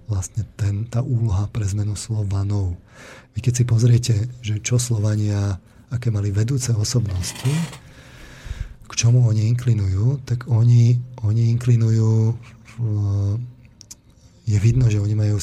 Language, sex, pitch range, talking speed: Slovak, male, 100-120 Hz, 120 wpm